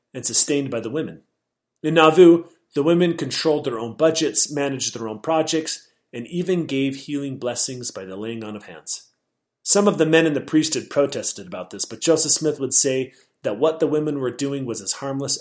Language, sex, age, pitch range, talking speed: English, male, 30-49, 120-155 Hz, 205 wpm